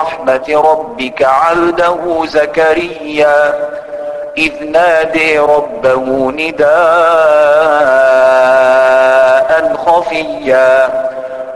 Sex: male